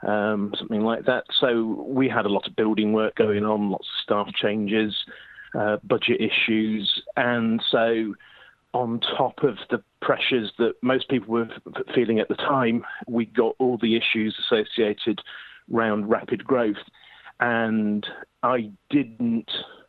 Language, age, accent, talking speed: English, 40-59, British, 145 wpm